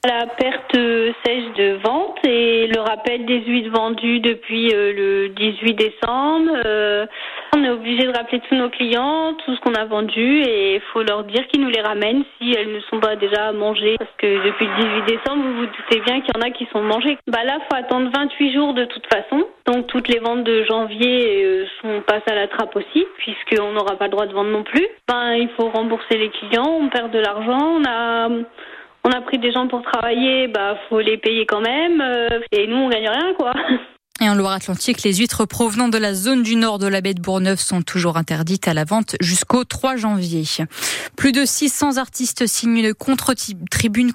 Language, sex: French, female